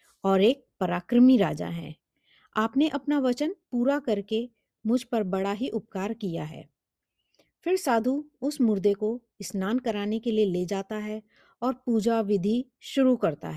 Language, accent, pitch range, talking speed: Hindi, native, 195-250 Hz, 150 wpm